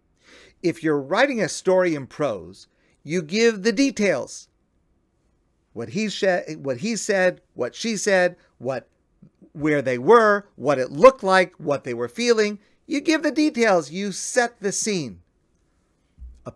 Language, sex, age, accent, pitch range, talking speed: English, male, 50-69, American, 125-195 Hz, 150 wpm